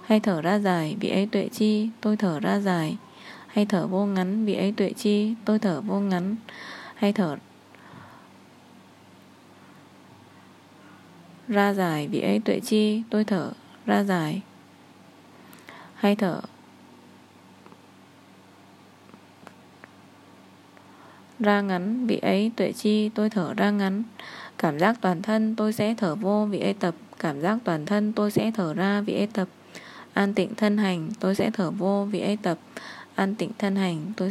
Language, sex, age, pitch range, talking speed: Vietnamese, female, 20-39, 185-215 Hz, 150 wpm